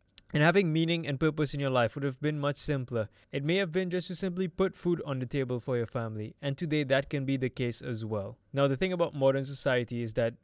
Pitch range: 120-155 Hz